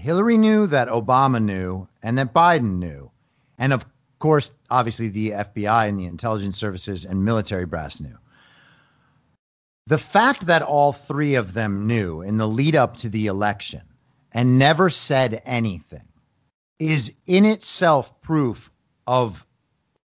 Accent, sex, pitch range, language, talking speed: American, male, 110-145 Hz, English, 140 wpm